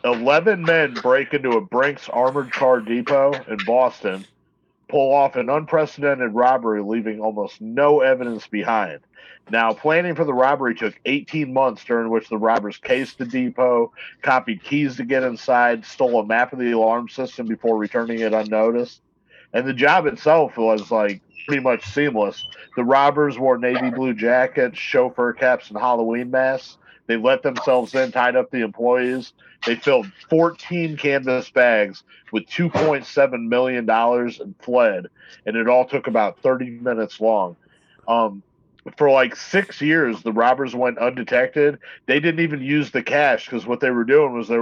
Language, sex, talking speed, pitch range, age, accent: English, male, 160 wpm, 115-140 Hz, 50-69, American